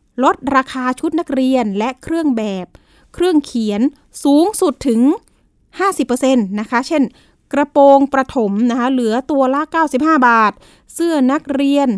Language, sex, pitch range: Thai, female, 230-280 Hz